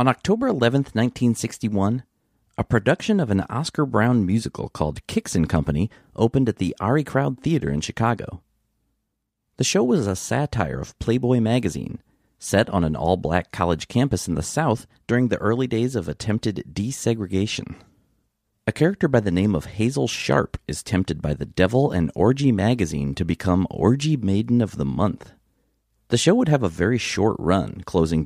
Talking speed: 170 wpm